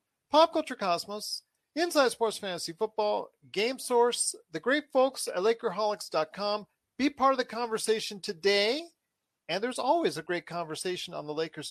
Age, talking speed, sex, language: 40-59, 150 wpm, male, English